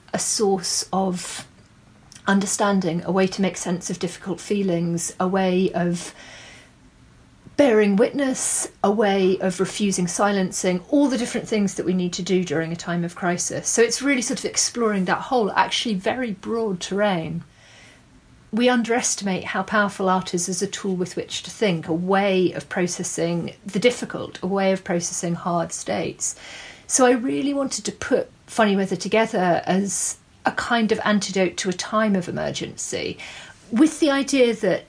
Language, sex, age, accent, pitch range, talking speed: English, female, 40-59, British, 185-225 Hz, 165 wpm